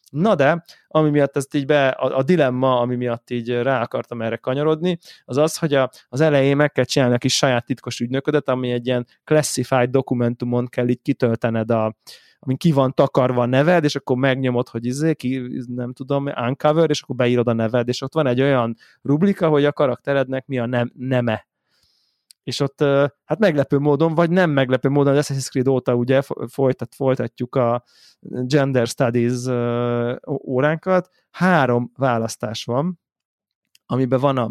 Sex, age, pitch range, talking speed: male, 20-39, 125-150 Hz, 170 wpm